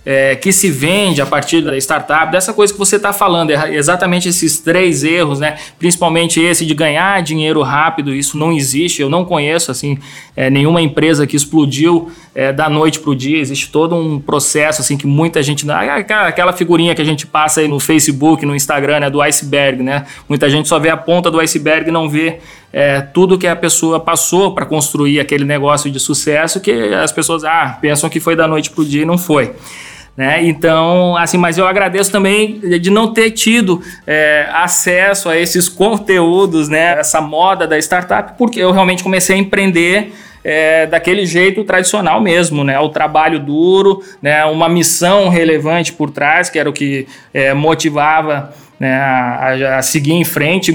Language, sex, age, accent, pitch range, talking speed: Portuguese, male, 20-39, Brazilian, 150-180 Hz, 185 wpm